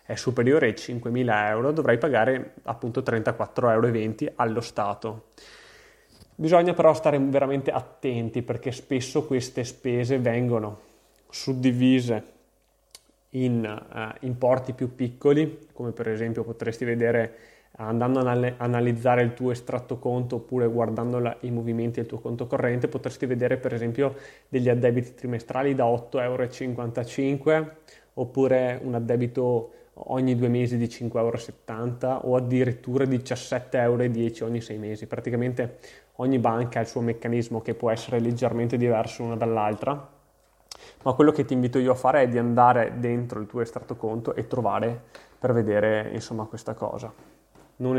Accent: native